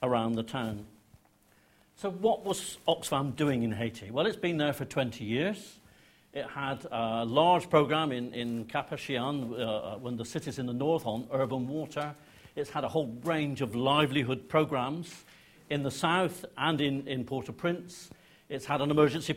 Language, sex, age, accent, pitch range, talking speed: English, male, 60-79, British, 125-155 Hz, 165 wpm